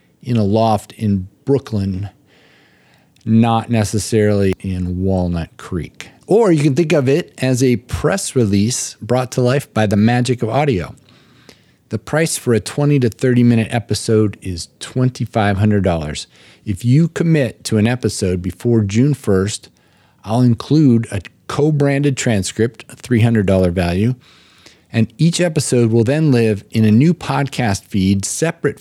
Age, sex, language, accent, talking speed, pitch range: 40-59, male, English, American, 140 wpm, 100-130 Hz